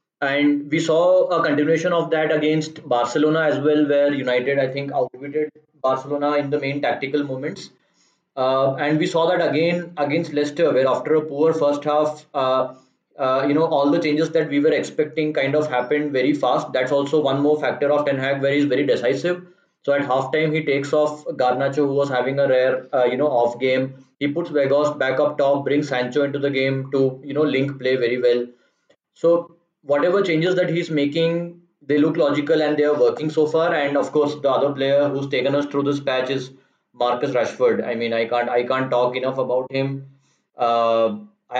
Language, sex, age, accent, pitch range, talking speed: English, male, 20-39, Indian, 135-155 Hz, 200 wpm